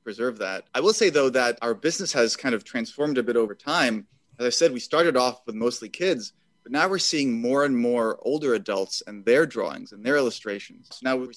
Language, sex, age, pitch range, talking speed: English, male, 30-49, 110-140 Hz, 225 wpm